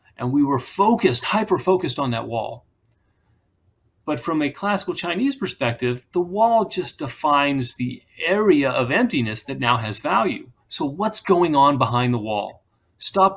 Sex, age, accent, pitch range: male, 30-49, American, 110-170 Hz